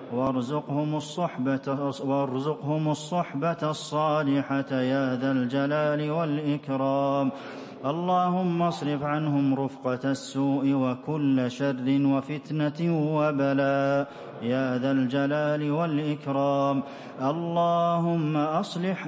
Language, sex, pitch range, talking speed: English, male, 135-150 Hz, 70 wpm